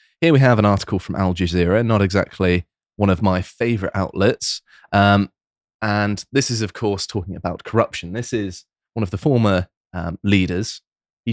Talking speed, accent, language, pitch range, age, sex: 175 wpm, British, English, 95-115 Hz, 20-39, male